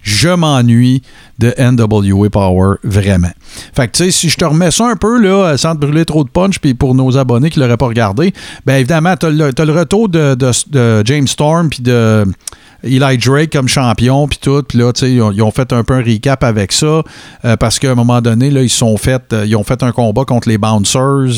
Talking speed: 240 wpm